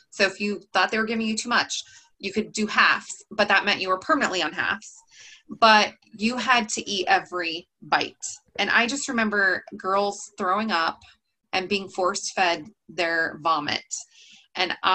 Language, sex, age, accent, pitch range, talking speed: English, female, 20-39, American, 190-235 Hz, 175 wpm